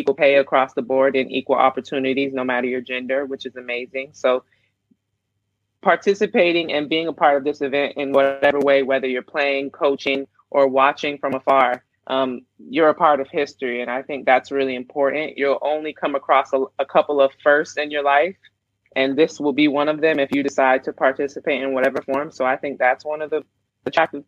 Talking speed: 205 wpm